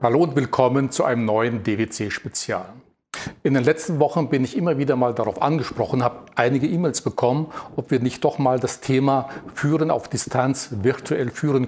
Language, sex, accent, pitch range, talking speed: German, male, German, 120-145 Hz, 175 wpm